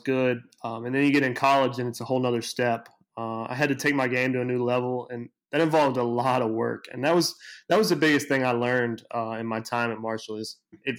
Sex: male